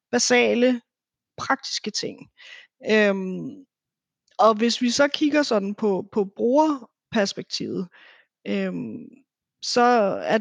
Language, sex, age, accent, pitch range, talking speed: Danish, female, 30-49, native, 200-235 Hz, 75 wpm